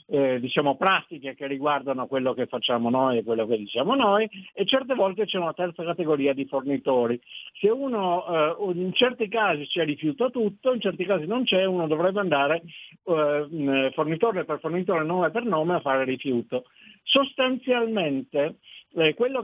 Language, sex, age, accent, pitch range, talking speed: Italian, male, 60-79, native, 145-180 Hz, 165 wpm